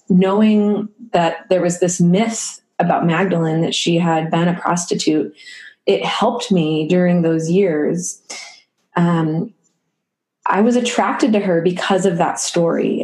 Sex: female